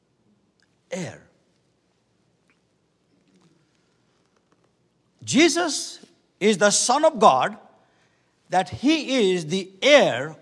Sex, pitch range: male, 170-250 Hz